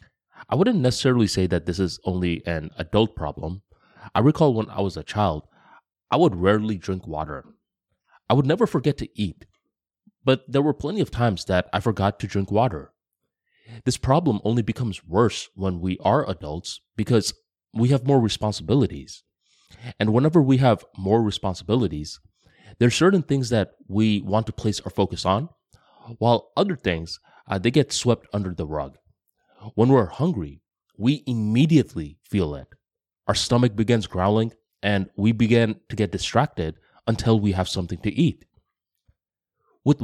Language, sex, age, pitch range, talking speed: English, male, 30-49, 90-120 Hz, 160 wpm